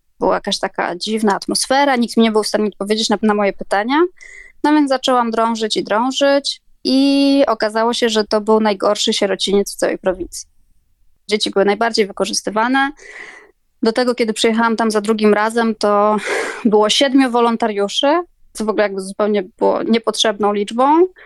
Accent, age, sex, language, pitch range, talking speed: native, 20-39, female, Polish, 205-235 Hz, 160 wpm